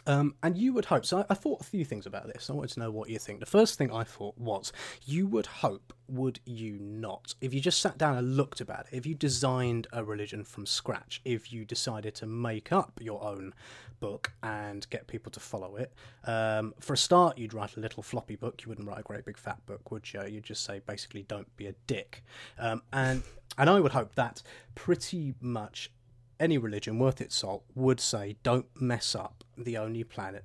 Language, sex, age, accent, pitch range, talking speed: English, male, 30-49, British, 110-130 Hz, 225 wpm